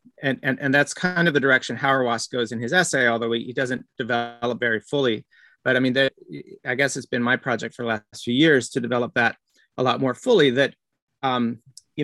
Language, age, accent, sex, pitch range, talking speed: English, 30-49, American, male, 115-140 Hz, 225 wpm